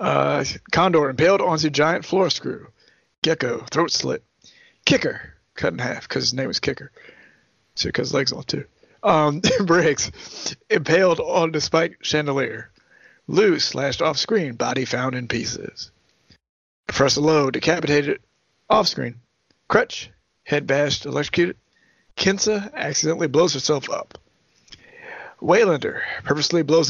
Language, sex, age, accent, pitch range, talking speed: English, male, 30-49, American, 135-165 Hz, 125 wpm